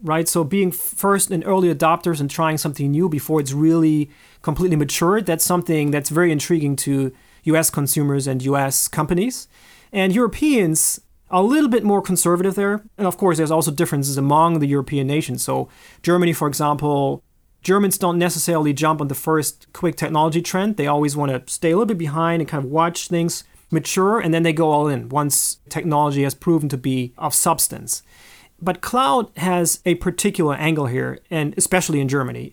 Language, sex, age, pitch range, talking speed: English, male, 30-49, 145-185 Hz, 185 wpm